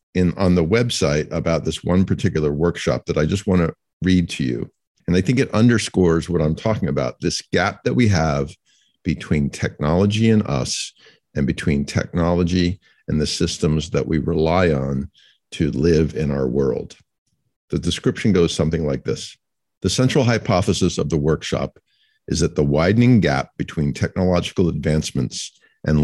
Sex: male